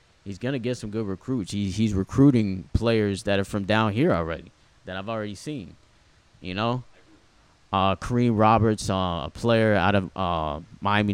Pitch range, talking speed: 90-110 Hz, 170 wpm